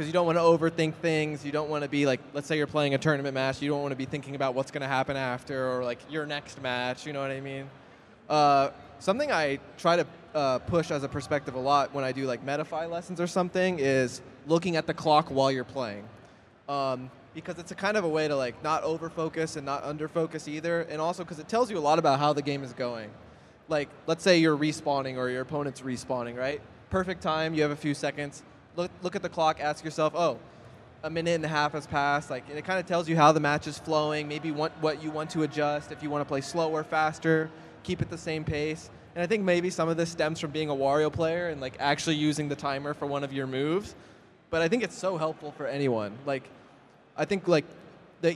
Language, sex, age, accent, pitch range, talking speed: English, male, 20-39, American, 135-160 Hz, 250 wpm